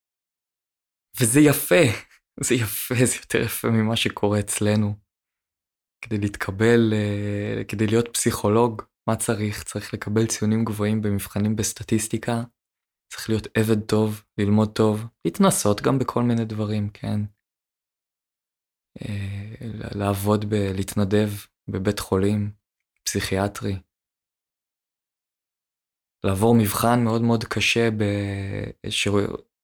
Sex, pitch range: male, 100-115 Hz